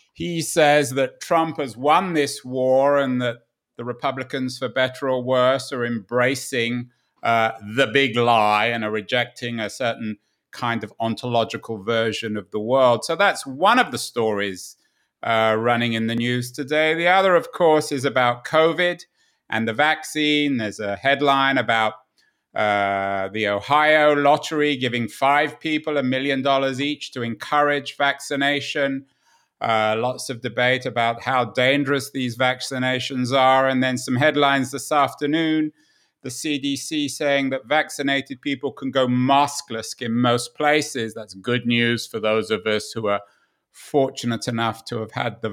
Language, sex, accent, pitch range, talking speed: English, male, British, 115-150 Hz, 155 wpm